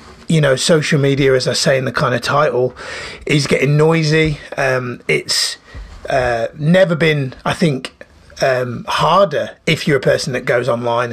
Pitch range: 130-160 Hz